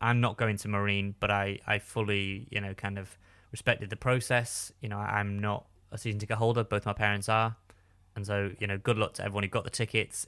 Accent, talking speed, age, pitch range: British, 235 wpm, 20-39, 100-120 Hz